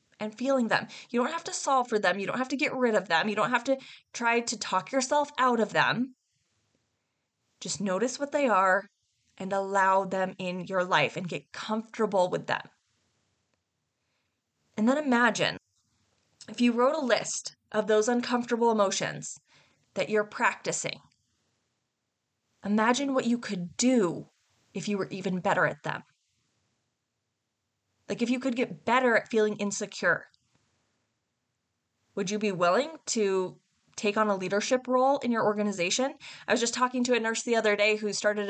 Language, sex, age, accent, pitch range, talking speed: English, female, 20-39, American, 190-250 Hz, 165 wpm